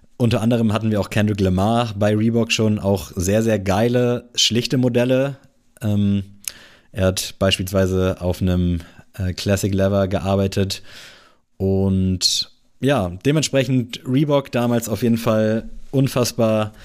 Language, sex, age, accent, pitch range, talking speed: German, male, 20-39, German, 95-115 Hz, 120 wpm